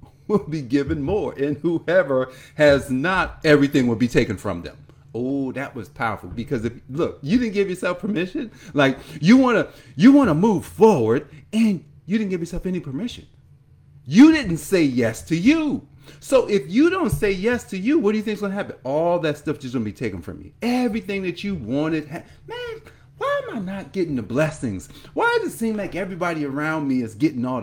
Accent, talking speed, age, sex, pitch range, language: American, 205 wpm, 40-59, male, 130-205 Hz, English